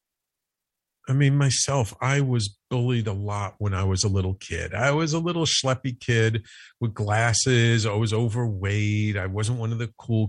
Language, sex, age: English, male, 50-69